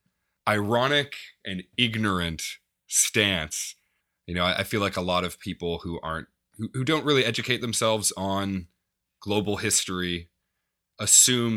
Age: 30-49